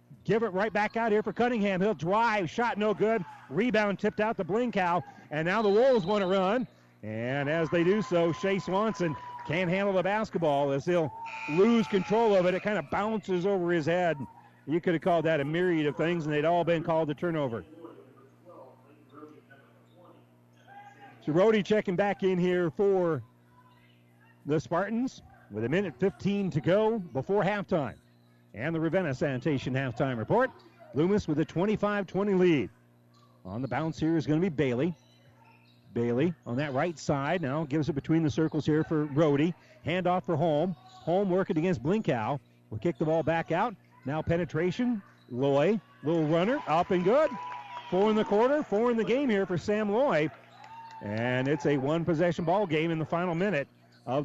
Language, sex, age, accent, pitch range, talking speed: English, male, 40-59, American, 145-195 Hz, 175 wpm